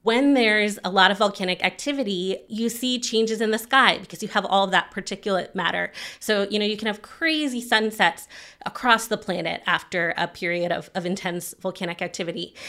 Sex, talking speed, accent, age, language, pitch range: female, 190 wpm, American, 30-49, English, 180-220 Hz